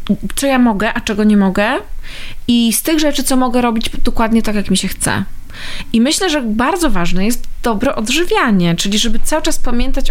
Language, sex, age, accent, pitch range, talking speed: Polish, female, 20-39, native, 205-255 Hz, 195 wpm